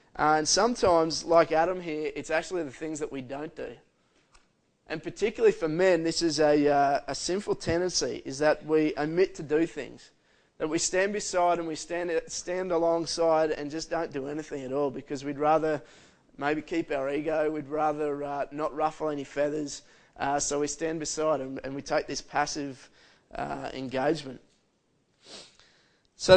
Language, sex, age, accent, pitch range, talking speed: English, male, 20-39, Australian, 145-170 Hz, 170 wpm